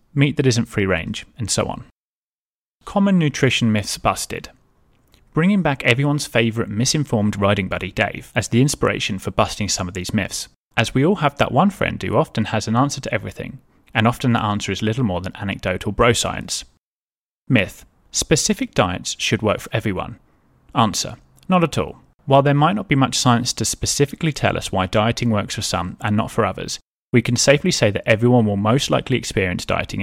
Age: 30-49